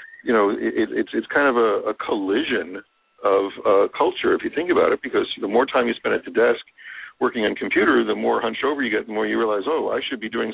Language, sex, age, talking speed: English, male, 50-69, 250 wpm